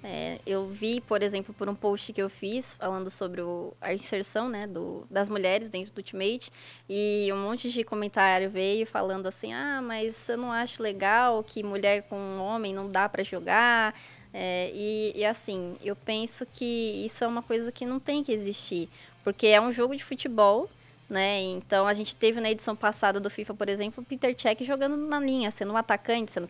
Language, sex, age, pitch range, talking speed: Portuguese, female, 10-29, 195-230 Hz, 200 wpm